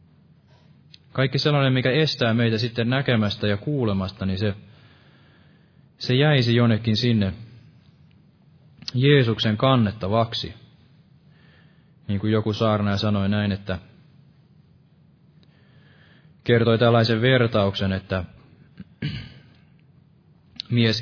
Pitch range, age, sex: 105-140 Hz, 20-39, male